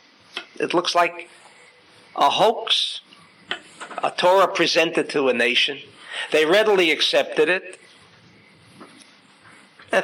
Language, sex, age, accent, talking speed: English, male, 60-79, American, 95 wpm